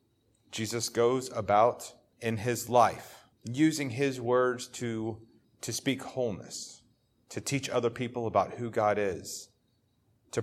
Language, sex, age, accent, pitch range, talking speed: English, male, 30-49, American, 105-120 Hz, 125 wpm